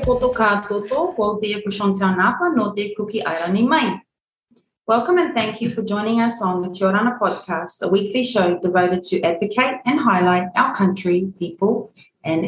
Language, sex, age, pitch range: English, female, 30-49, 170-225 Hz